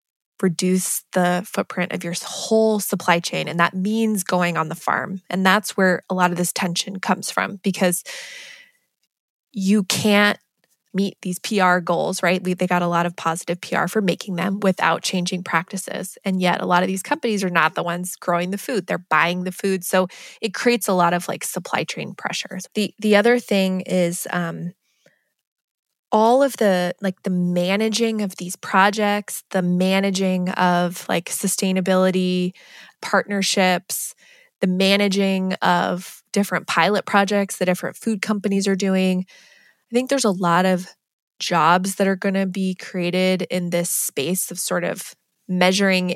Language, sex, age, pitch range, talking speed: English, female, 20-39, 180-205 Hz, 165 wpm